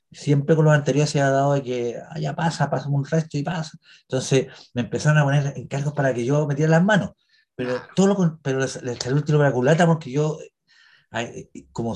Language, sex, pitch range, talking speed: Spanish, male, 125-165 Hz, 220 wpm